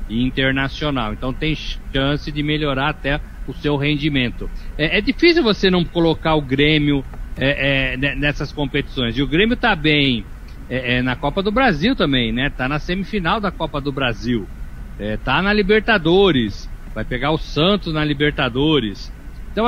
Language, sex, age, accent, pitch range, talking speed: Portuguese, male, 60-79, Brazilian, 135-180 Hz, 160 wpm